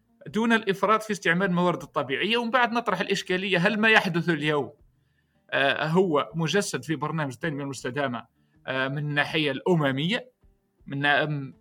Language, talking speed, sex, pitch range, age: Arabic, 125 wpm, male, 140-195 Hz, 30-49